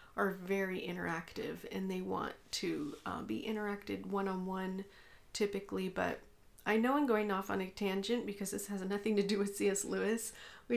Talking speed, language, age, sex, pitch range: 175 wpm, English, 40-59, female, 195-220 Hz